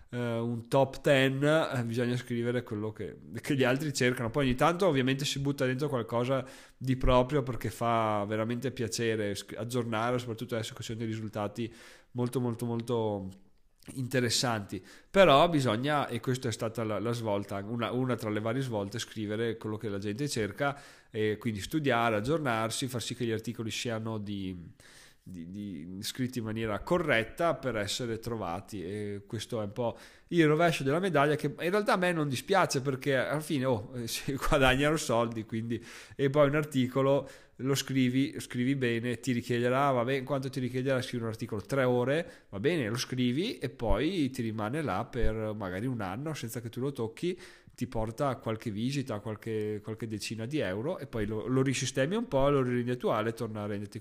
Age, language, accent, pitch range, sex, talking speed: 30-49, Italian, native, 110-135 Hz, male, 180 wpm